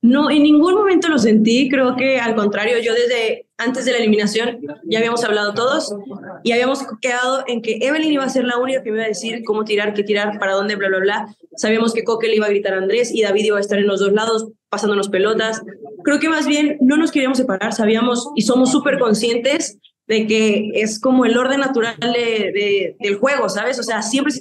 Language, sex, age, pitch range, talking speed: Spanish, female, 20-39, 215-265 Hz, 230 wpm